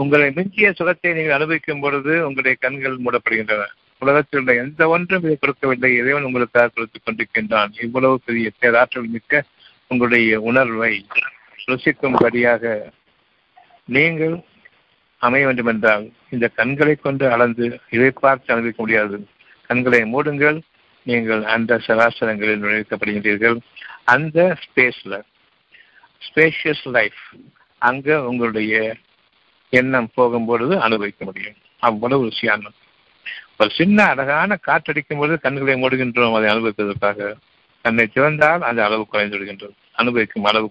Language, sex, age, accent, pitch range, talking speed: Tamil, male, 60-79, native, 115-140 Hz, 100 wpm